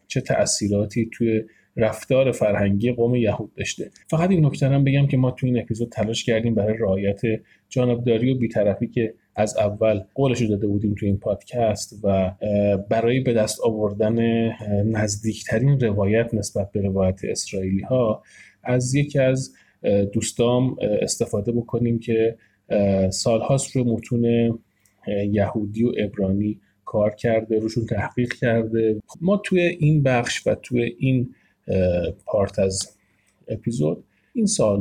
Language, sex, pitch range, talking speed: Persian, male, 100-125 Hz, 125 wpm